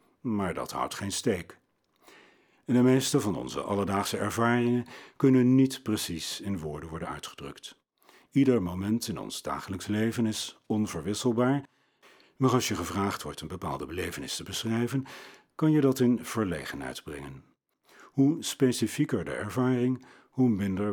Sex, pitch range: male, 90-125 Hz